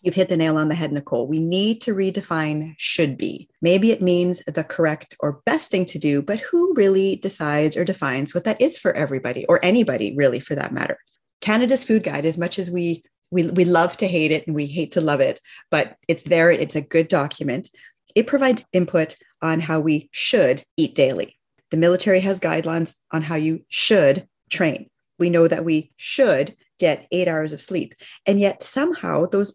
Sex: female